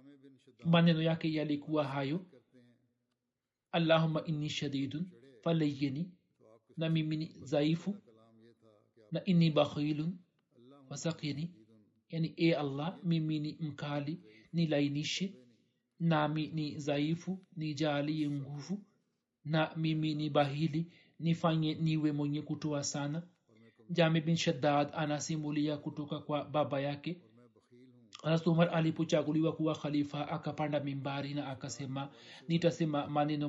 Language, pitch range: Swahili, 140-160 Hz